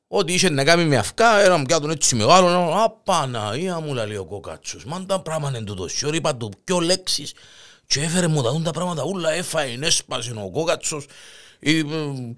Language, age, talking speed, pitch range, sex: Greek, 50-69, 175 wpm, 125-205 Hz, male